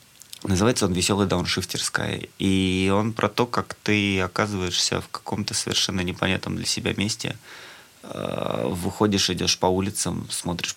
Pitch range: 95-115 Hz